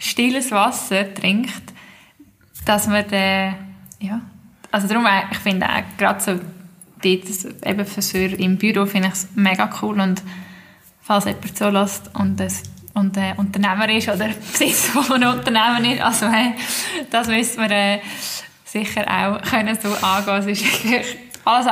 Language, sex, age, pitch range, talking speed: German, female, 10-29, 195-215 Hz, 160 wpm